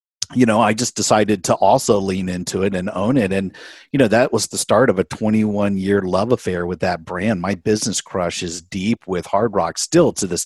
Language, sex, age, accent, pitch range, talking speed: English, male, 50-69, American, 95-115 Hz, 225 wpm